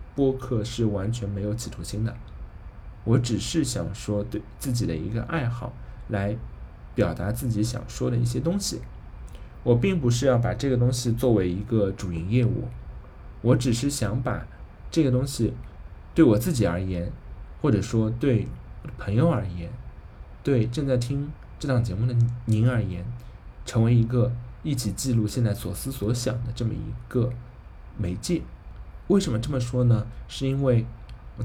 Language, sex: Chinese, male